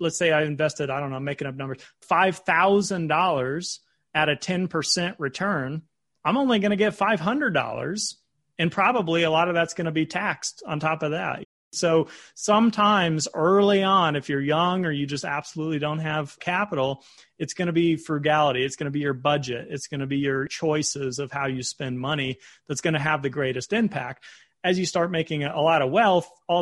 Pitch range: 135-175 Hz